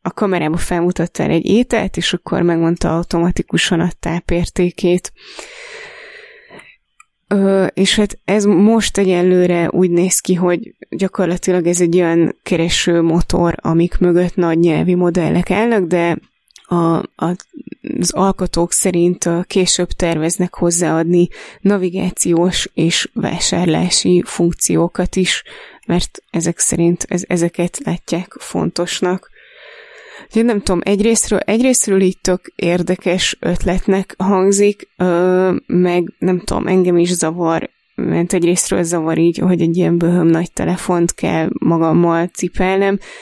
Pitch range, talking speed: 170-185 Hz, 110 wpm